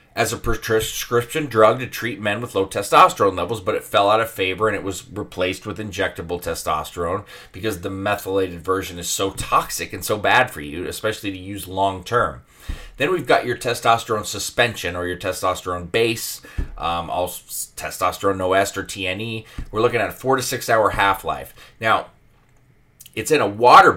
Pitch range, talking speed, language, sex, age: 95-120 Hz, 175 wpm, English, male, 30-49